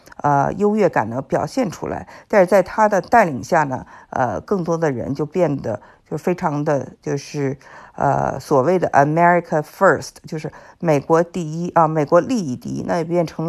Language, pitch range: Chinese, 145-180 Hz